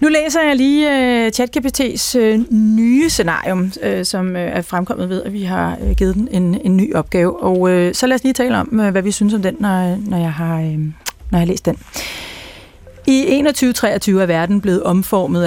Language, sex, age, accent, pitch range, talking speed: Danish, female, 30-49, native, 175-205 Hz, 205 wpm